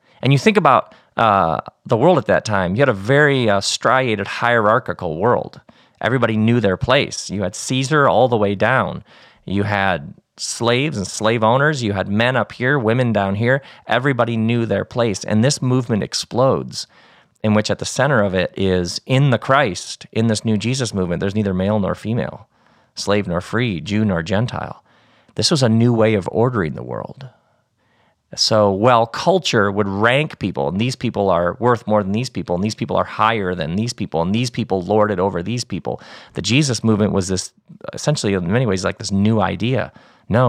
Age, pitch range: 40-59, 100-125 Hz